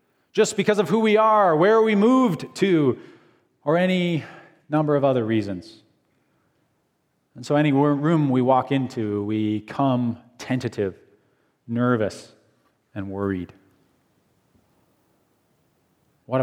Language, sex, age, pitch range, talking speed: English, male, 30-49, 115-160 Hz, 110 wpm